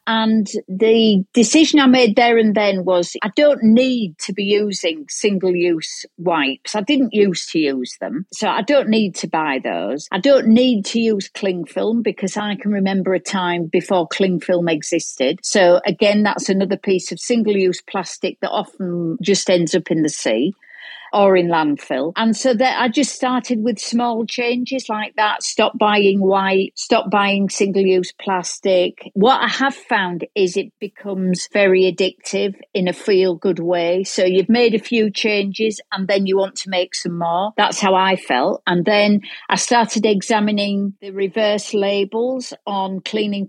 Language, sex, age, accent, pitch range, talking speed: English, female, 50-69, British, 185-220 Hz, 170 wpm